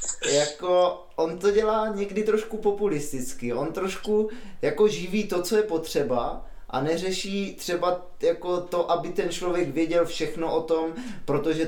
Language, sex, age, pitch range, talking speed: Czech, male, 20-39, 145-180 Hz, 145 wpm